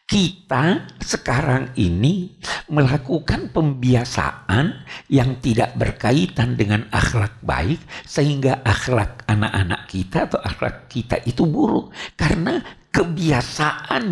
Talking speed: 95 wpm